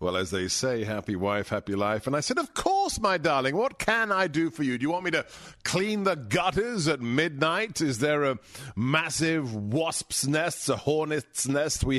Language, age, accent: English, 50-69, British